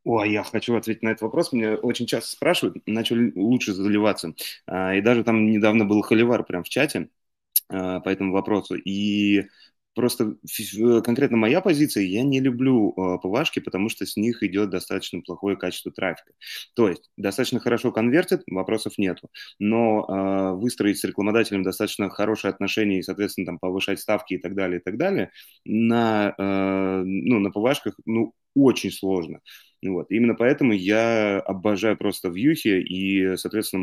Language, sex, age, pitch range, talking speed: Russian, male, 20-39, 95-110 Hz, 150 wpm